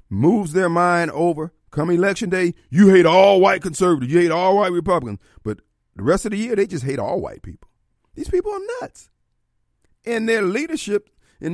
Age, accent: 50-69, American